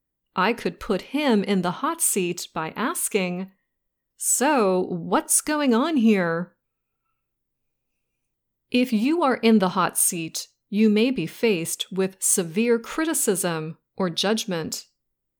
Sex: female